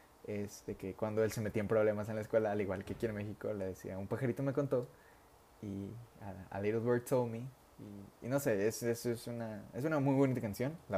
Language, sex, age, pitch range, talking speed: Spanish, male, 20-39, 105-125 Hz, 235 wpm